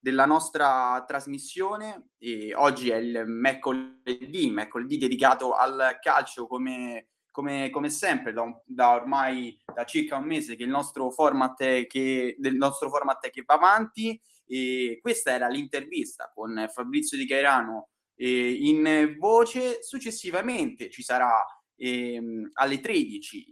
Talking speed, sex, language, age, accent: 140 wpm, male, Italian, 20-39, native